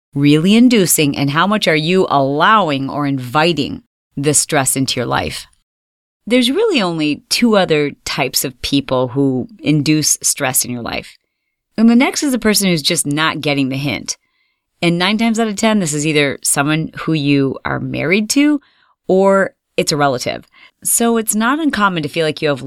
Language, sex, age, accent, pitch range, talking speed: English, female, 30-49, American, 145-215 Hz, 185 wpm